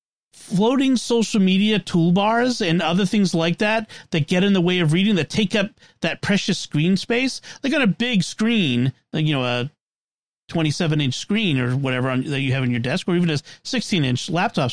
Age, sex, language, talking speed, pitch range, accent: 40-59, male, English, 195 wpm, 150-195 Hz, American